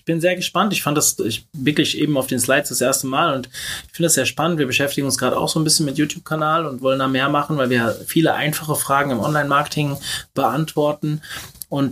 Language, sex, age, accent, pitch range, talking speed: German, male, 20-39, German, 140-175 Hz, 240 wpm